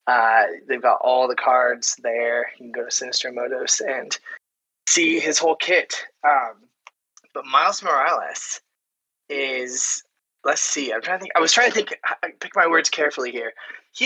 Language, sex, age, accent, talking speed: English, male, 20-39, American, 165 wpm